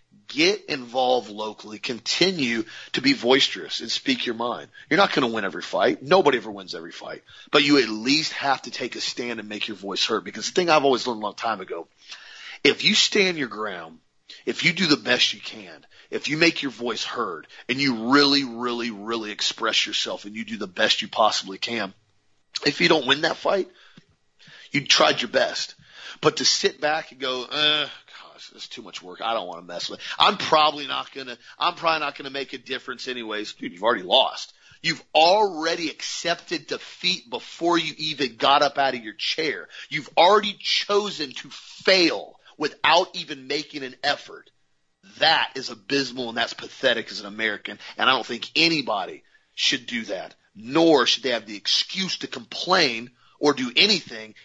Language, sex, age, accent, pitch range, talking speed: English, male, 40-59, American, 120-170 Hz, 190 wpm